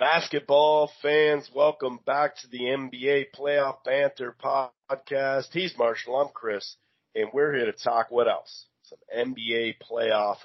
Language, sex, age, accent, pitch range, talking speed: English, male, 40-59, American, 120-145 Hz, 140 wpm